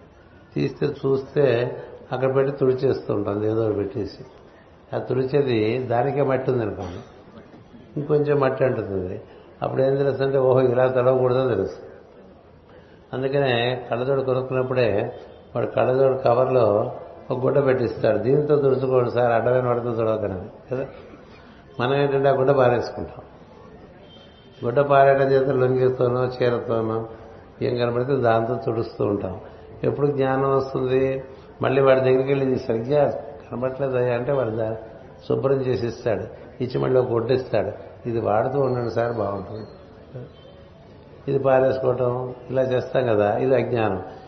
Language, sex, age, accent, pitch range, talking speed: Telugu, male, 60-79, native, 115-135 Hz, 115 wpm